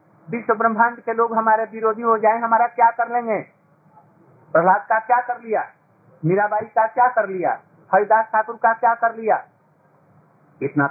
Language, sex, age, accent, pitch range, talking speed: Hindi, male, 50-69, native, 165-225 Hz, 145 wpm